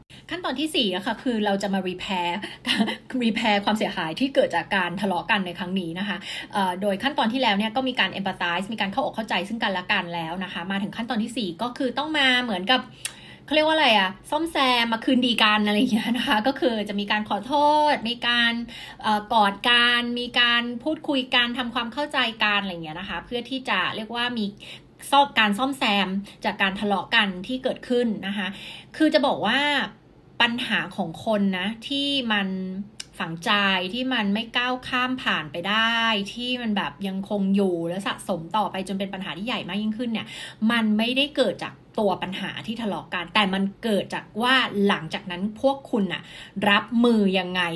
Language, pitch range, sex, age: Thai, 195-250 Hz, female, 20-39